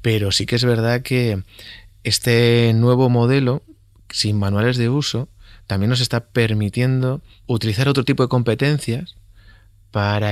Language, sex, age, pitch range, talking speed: Spanish, male, 30-49, 100-120 Hz, 135 wpm